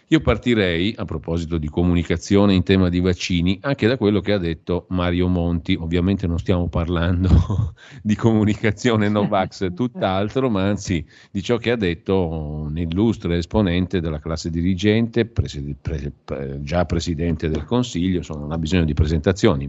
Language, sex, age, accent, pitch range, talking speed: Italian, male, 50-69, native, 85-105 Hz, 160 wpm